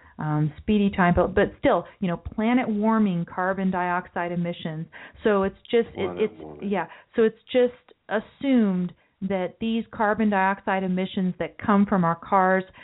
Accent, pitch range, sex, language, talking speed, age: American, 175-205 Hz, female, English, 155 wpm, 40-59